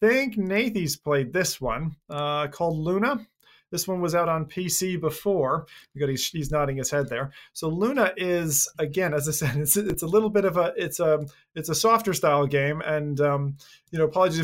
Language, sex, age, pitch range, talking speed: English, male, 30-49, 145-180 Hz, 195 wpm